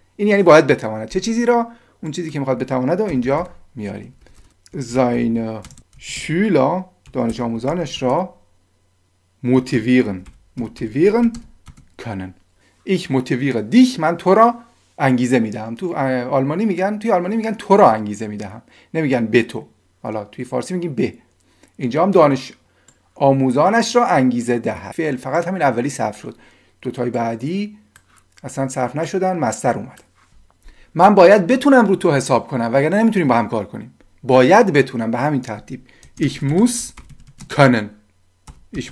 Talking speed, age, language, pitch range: 145 wpm, 40-59, Persian, 110-170 Hz